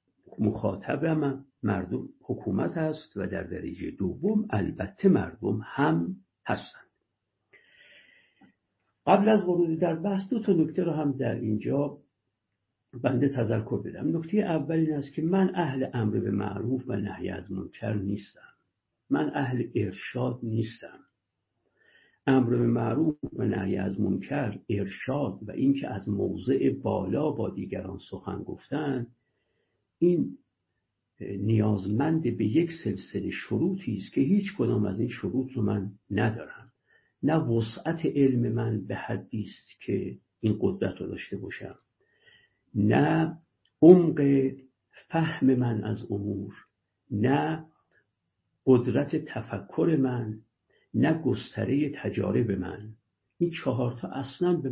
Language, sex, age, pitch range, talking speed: Persian, male, 60-79, 105-155 Hz, 120 wpm